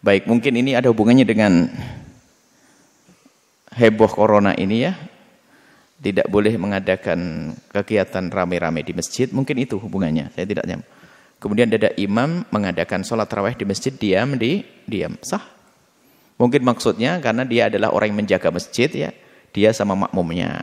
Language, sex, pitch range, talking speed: Indonesian, male, 100-135 Hz, 140 wpm